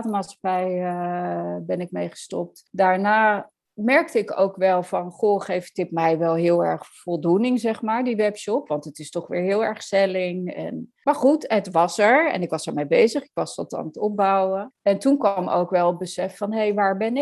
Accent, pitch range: Dutch, 185-245 Hz